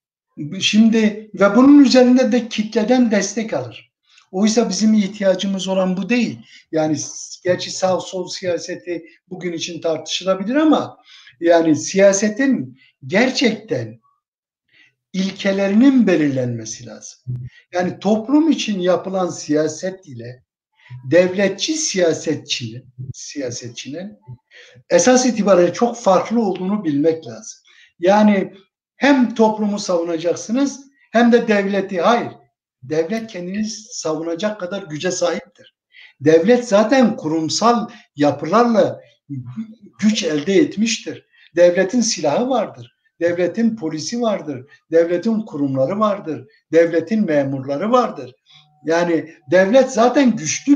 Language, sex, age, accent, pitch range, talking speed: Turkish, male, 60-79, native, 160-230 Hz, 100 wpm